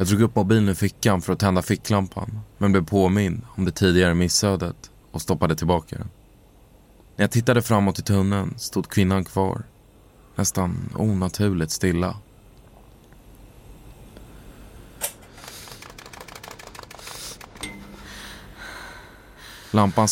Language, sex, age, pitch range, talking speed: Swedish, male, 20-39, 85-105 Hz, 100 wpm